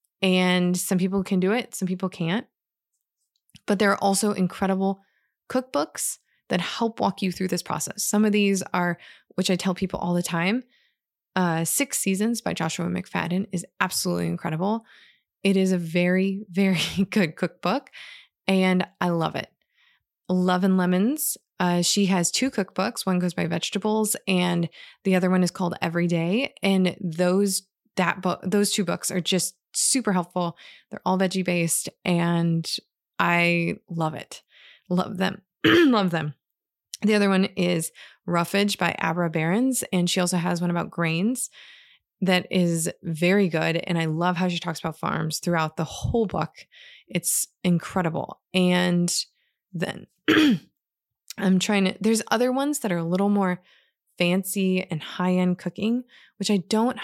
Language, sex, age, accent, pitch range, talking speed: English, female, 20-39, American, 175-200 Hz, 155 wpm